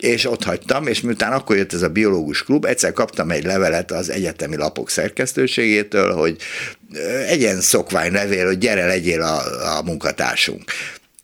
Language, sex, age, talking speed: Hungarian, male, 60-79, 160 wpm